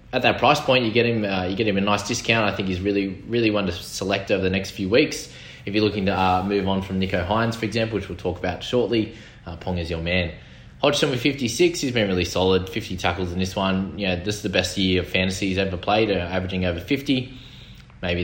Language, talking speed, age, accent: English, 255 wpm, 20-39, Australian